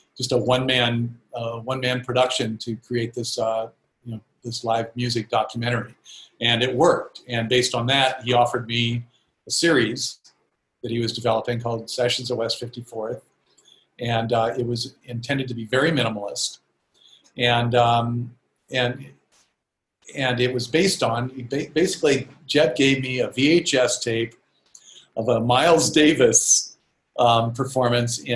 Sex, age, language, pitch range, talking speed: male, 50-69, English, 115-130 Hz, 145 wpm